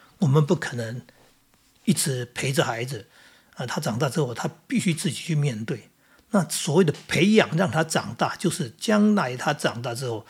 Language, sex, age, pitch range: Chinese, male, 50-69, 130-170 Hz